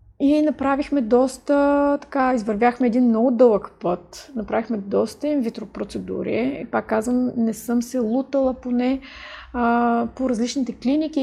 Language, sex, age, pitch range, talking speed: Bulgarian, female, 30-49, 225-260 Hz, 130 wpm